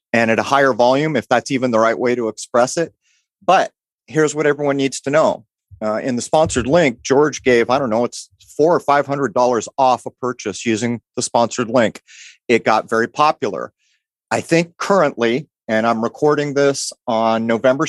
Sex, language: male, English